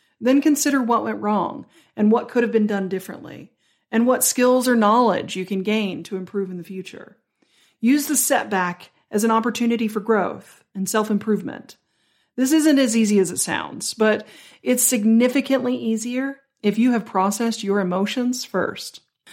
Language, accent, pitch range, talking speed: English, American, 195-245 Hz, 165 wpm